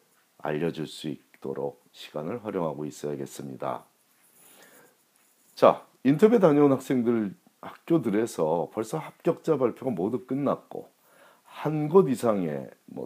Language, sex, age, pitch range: Korean, male, 40-59, 80-125 Hz